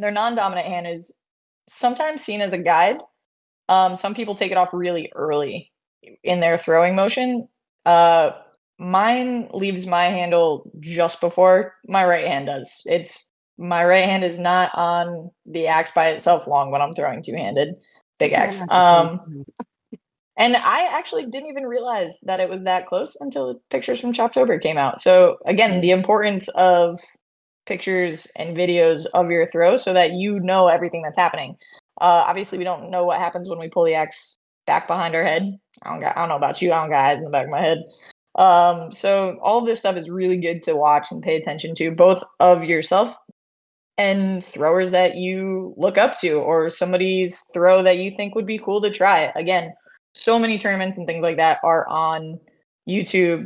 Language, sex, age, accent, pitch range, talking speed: English, female, 20-39, American, 165-195 Hz, 185 wpm